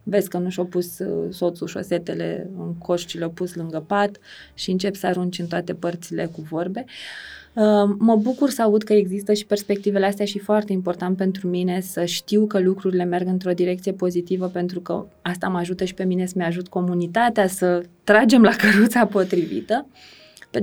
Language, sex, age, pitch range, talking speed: Romanian, female, 20-39, 180-215 Hz, 175 wpm